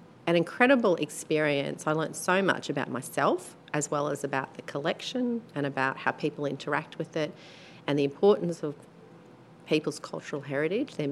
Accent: Australian